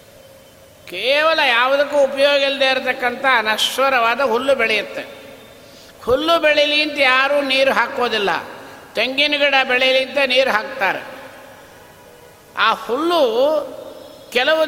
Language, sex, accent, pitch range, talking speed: Kannada, male, native, 240-280 Hz, 95 wpm